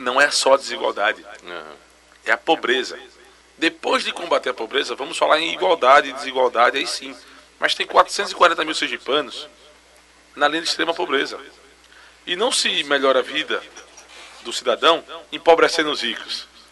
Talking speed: 150 wpm